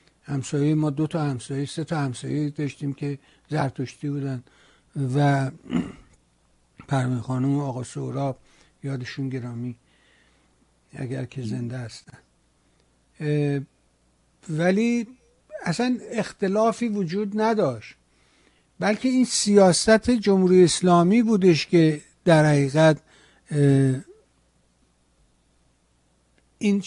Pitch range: 140-180 Hz